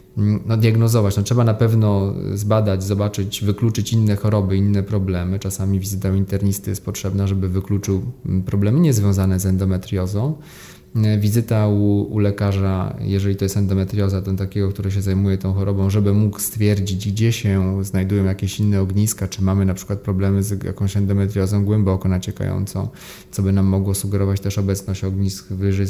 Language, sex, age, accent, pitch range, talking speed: Polish, male, 20-39, native, 95-115 Hz, 160 wpm